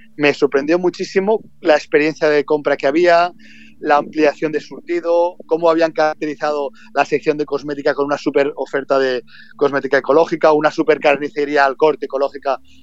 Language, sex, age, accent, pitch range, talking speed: Spanish, male, 30-49, Spanish, 145-180 Hz, 155 wpm